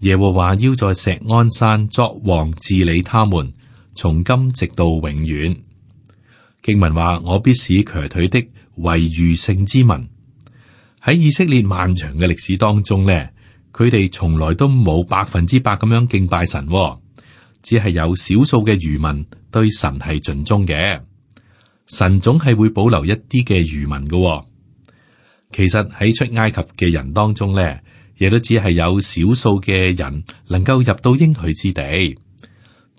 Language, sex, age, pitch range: Chinese, male, 30-49, 85-115 Hz